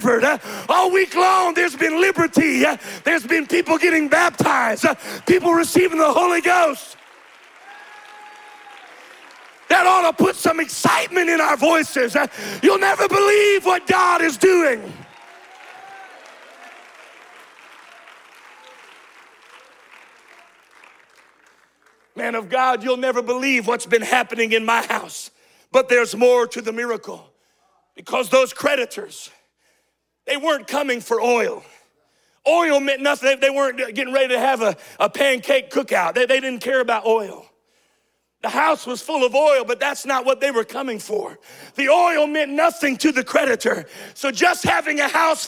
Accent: American